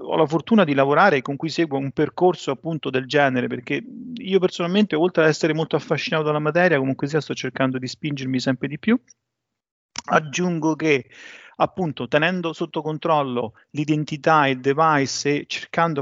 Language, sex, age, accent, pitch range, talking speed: Italian, male, 40-59, native, 130-160 Hz, 165 wpm